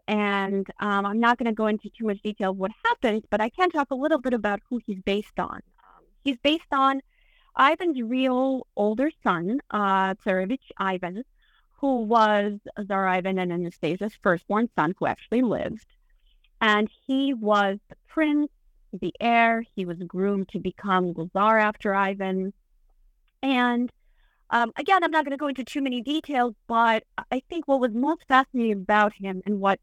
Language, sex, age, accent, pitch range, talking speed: English, female, 50-69, American, 190-250 Hz, 175 wpm